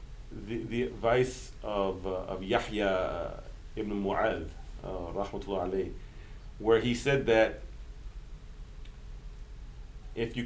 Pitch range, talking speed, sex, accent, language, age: 105-130 Hz, 105 wpm, male, American, English, 40-59